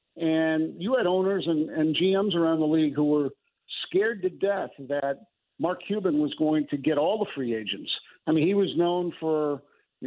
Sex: male